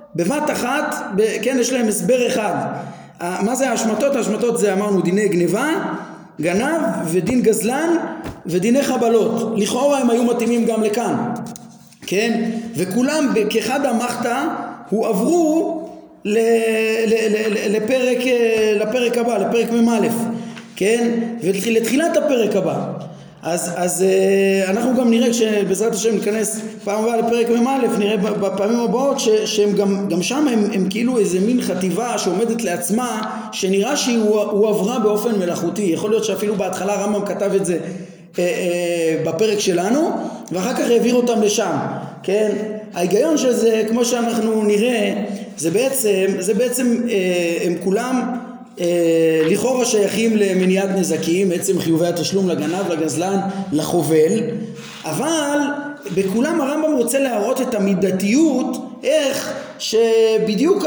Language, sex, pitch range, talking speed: Hebrew, male, 195-240 Hz, 125 wpm